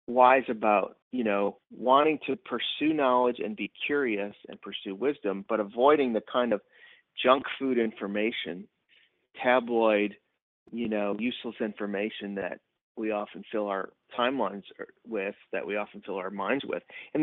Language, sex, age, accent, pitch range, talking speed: English, male, 30-49, American, 100-125 Hz, 145 wpm